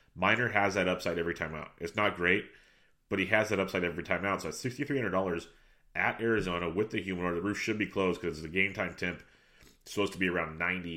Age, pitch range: 30-49, 90-105 Hz